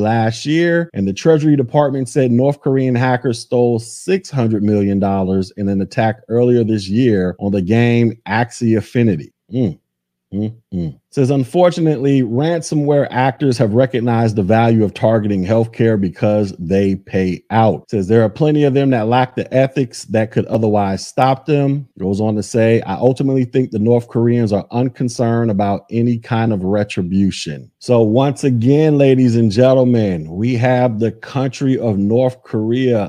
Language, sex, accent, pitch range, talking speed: English, male, American, 105-130 Hz, 155 wpm